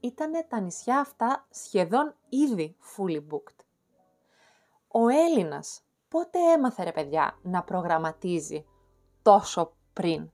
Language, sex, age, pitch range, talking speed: Greek, female, 20-39, 155-215 Hz, 105 wpm